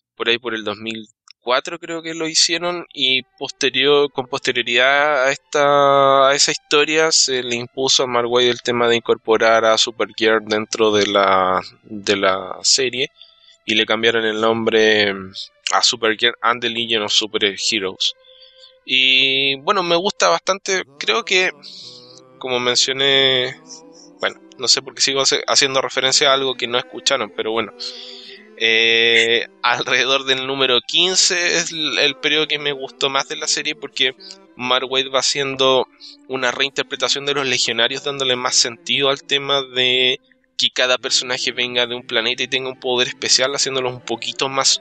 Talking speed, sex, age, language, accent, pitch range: 160 wpm, male, 20-39, Spanish, Argentinian, 115-145 Hz